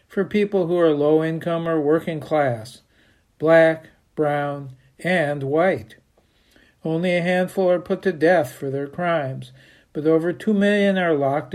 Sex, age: male, 60-79